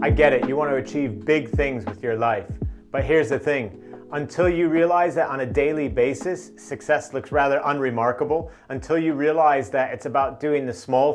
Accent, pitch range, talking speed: American, 130-170 Hz, 200 wpm